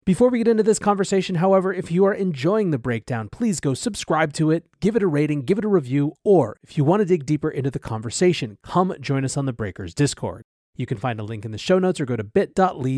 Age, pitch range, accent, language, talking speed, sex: 30-49, 130-180 Hz, American, English, 260 wpm, male